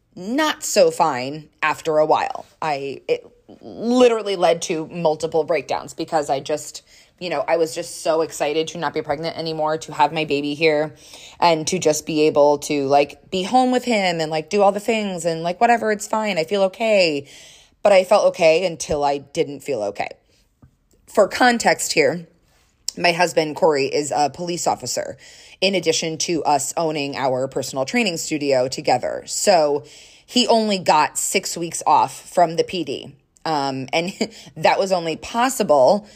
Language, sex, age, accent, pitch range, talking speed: English, female, 20-39, American, 150-195 Hz, 170 wpm